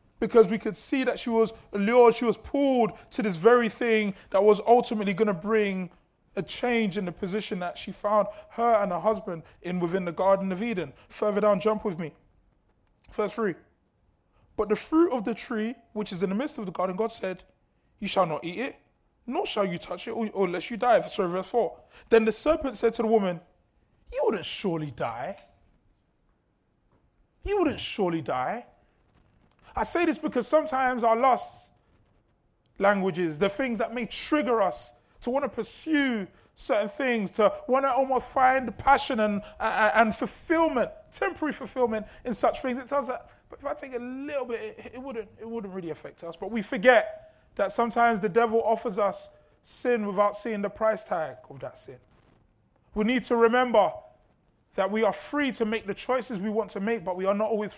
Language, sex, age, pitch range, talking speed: English, male, 20-39, 200-250 Hz, 195 wpm